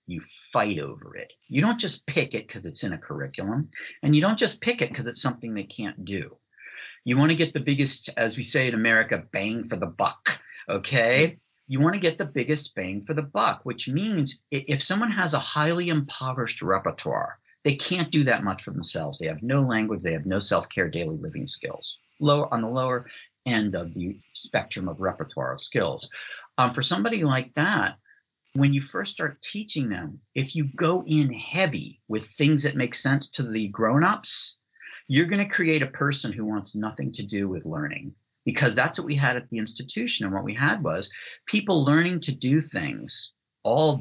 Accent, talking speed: American, 200 wpm